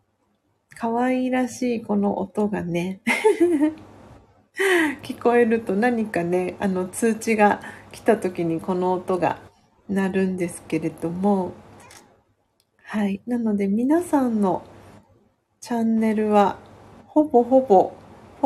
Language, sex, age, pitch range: Japanese, female, 40-59, 185-255 Hz